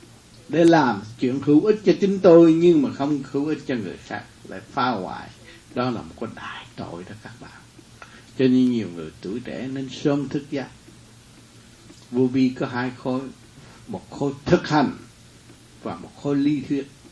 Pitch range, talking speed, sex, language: 120-155 Hz, 180 wpm, male, Vietnamese